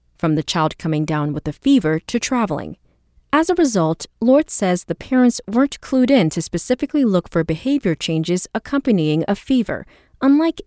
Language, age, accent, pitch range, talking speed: English, 30-49, American, 160-265 Hz, 170 wpm